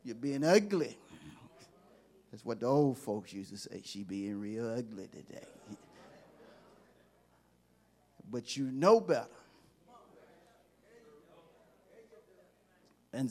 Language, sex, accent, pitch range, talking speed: English, male, American, 125-180 Hz, 95 wpm